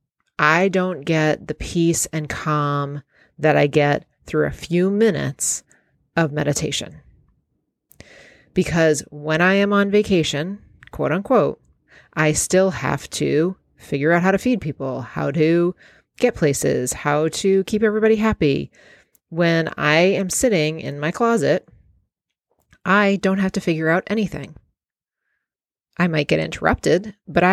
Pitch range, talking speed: 150-190 Hz, 135 wpm